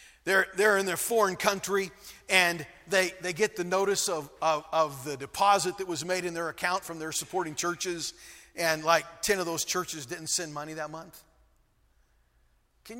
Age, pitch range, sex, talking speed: 40-59, 155-205 Hz, male, 180 wpm